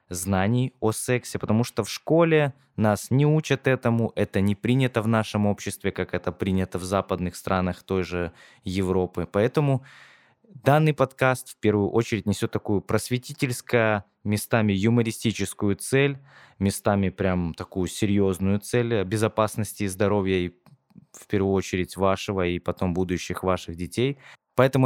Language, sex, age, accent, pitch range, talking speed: Russian, male, 20-39, native, 90-110 Hz, 135 wpm